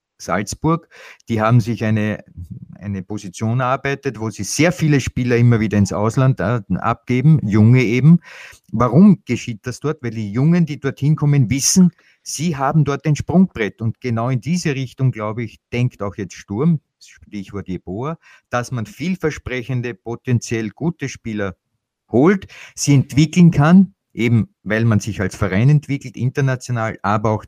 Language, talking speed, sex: German, 150 wpm, male